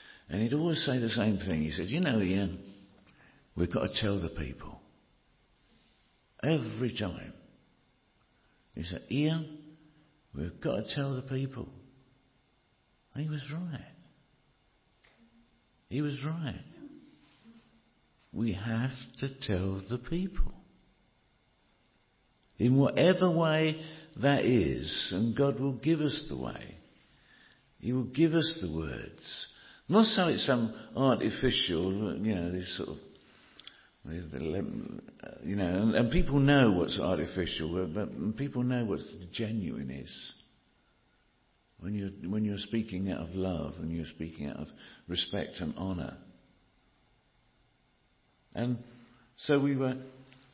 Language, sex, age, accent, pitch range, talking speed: English, male, 60-79, British, 90-135 Hz, 125 wpm